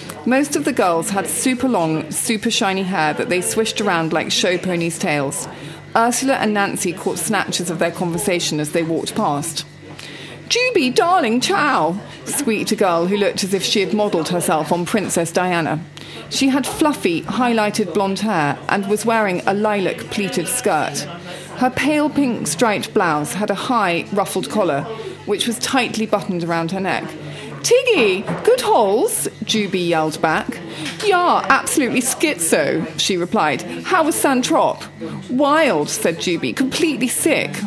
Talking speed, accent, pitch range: 155 wpm, British, 170-260 Hz